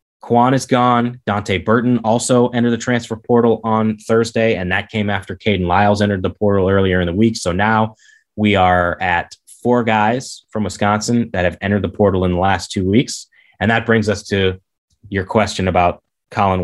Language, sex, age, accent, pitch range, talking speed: English, male, 20-39, American, 90-115 Hz, 190 wpm